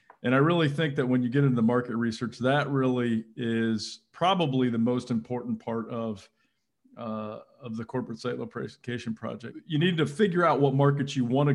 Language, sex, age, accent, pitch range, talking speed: English, male, 40-59, American, 125-145 Hz, 195 wpm